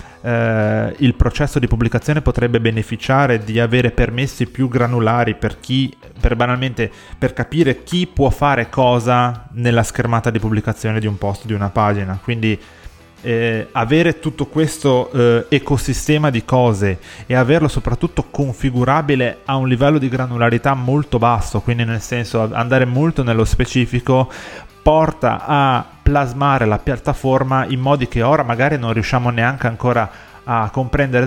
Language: Italian